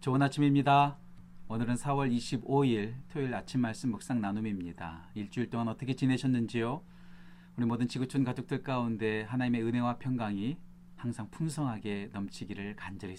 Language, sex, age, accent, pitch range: Korean, male, 40-59, native, 110-145 Hz